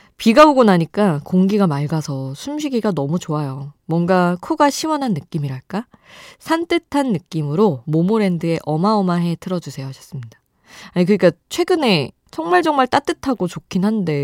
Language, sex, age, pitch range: Korean, female, 20-39, 150-225 Hz